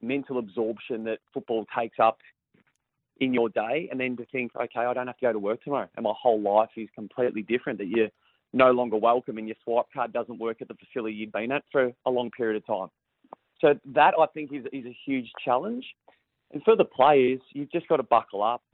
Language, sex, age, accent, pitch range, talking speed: English, male, 30-49, Australian, 115-140 Hz, 225 wpm